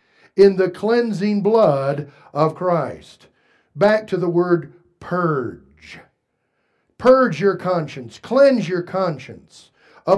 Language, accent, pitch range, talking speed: English, American, 155-205 Hz, 105 wpm